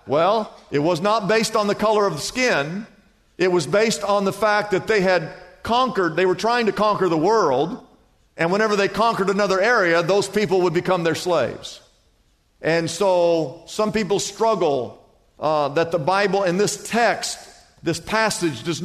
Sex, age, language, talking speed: male, 50-69, English, 175 wpm